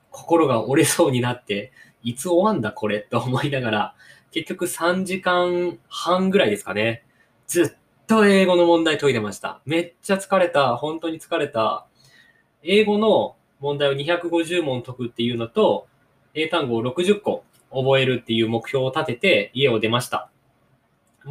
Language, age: Japanese, 20-39